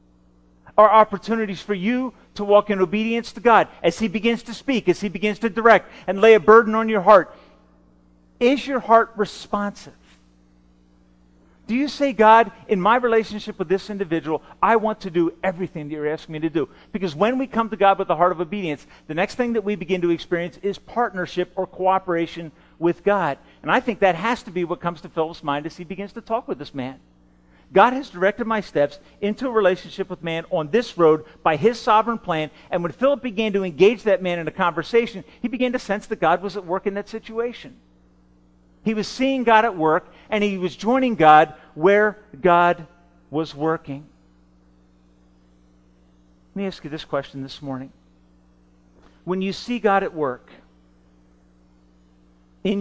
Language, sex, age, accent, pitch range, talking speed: English, male, 40-59, American, 130-215 Hz, 190 wpm